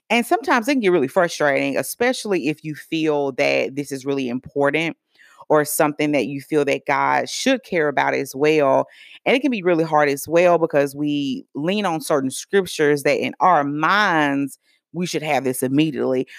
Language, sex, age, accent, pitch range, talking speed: English, female, 30-49, American, 140-175 Hz, 185 wpm